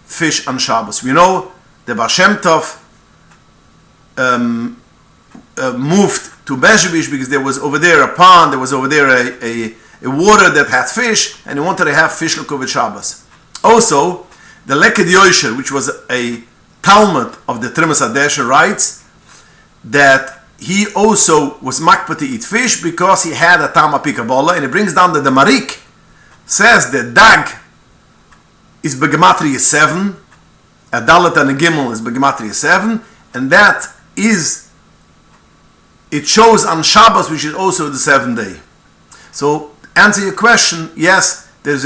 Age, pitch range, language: 50-69, 140-190 Hz, English